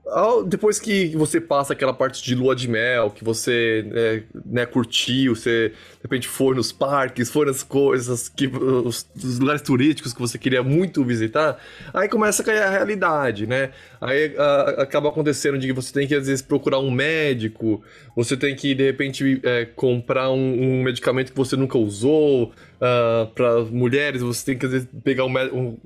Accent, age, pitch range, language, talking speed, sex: Brazilian, 20-39, 130-170 Hz, Portuguese, 180 wpm, male